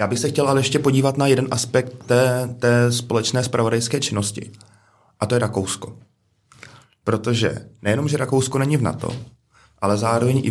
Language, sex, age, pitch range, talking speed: Czech, male, 20-39, 100-120 Hz, 165 wpm